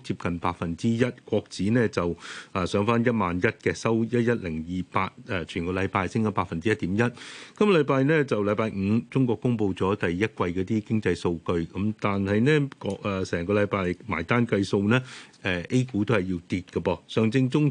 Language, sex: Chinese, male